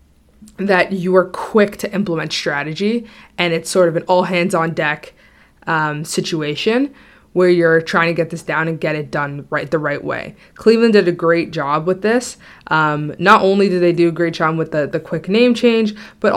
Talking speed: 205 wpm